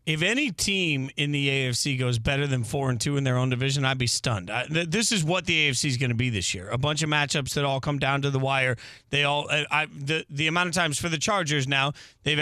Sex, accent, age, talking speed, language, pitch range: male, American, 40-59, 265 wpm, English, 135-160 Hz